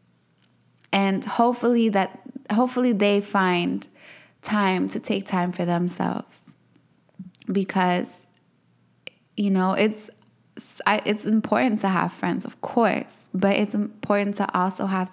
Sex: female